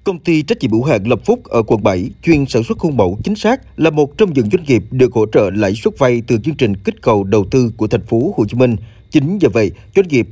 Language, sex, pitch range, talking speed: Vietnamese, male, 115-155 Hz, 280 wpm